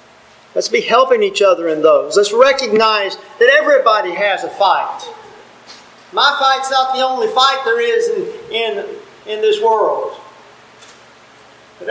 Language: English